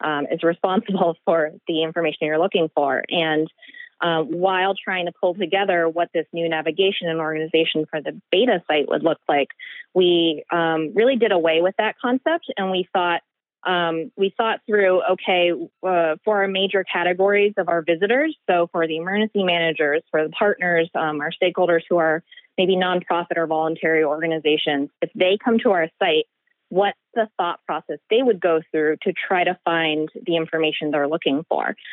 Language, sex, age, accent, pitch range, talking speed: English, female, 20-39, American, 160-190 Hz, 175 wpm